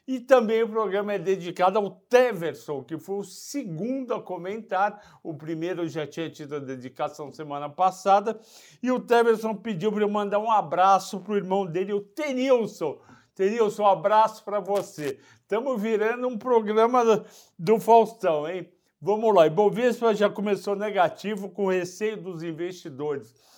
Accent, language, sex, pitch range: Brazilian, Portuguese, male, 150-205 Hz